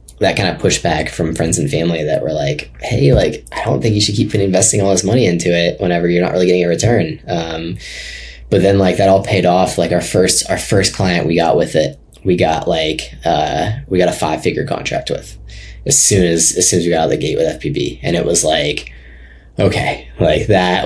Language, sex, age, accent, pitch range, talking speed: English, male, 10-29, American, 85-105 Hz, 235 wpm